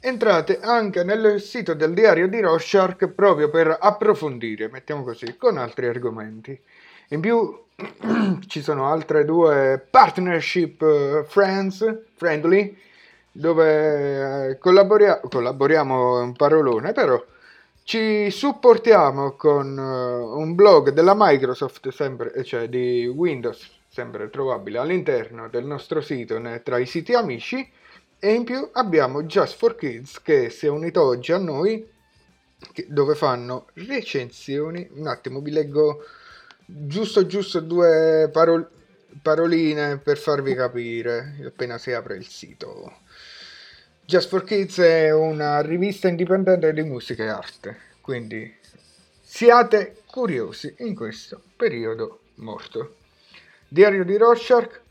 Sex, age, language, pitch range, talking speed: male, 30-49, Italian, 145-210 Hz, 115 wpm